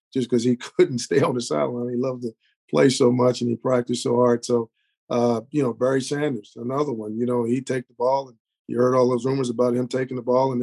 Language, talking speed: English, 255 wpm